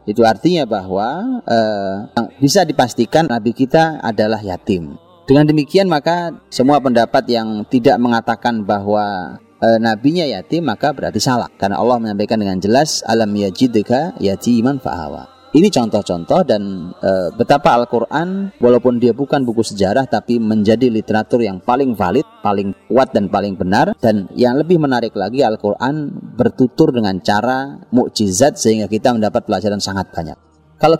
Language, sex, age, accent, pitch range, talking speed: Indonesian, male, 30-49, native, 110-140 Hz, 140 wpm